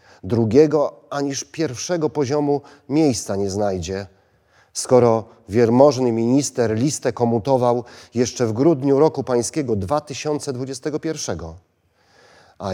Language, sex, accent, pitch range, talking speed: Polish, male, native, 95-115 Hz, 90 wpm